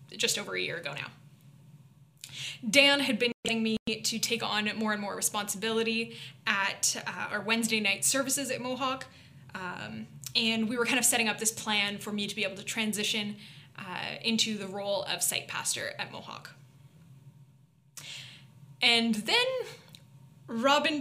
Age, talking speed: 10-29, 155 wpm